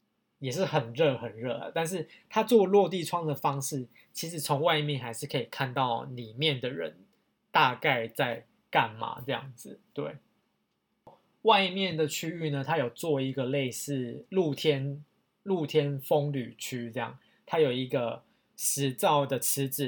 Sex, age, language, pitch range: male, 20-39, Chinese, 130-155 Hz